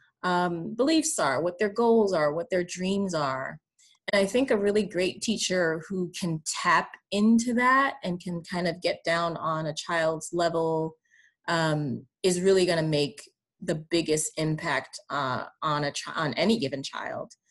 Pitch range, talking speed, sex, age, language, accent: 160-200 Hz, 170 wpm, female, 30-49, English, American